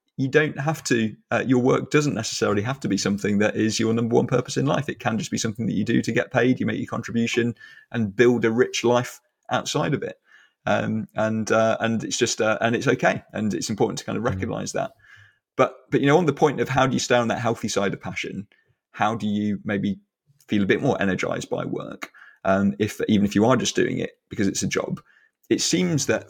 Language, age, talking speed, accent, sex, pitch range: Finnish, 30-49, 245 wpm, British, male, 105-125 Hz